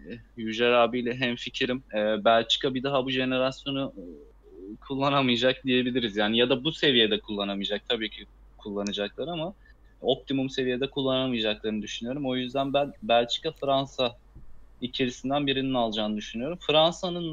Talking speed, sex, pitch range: 125 wpm, male, 110-125 Hz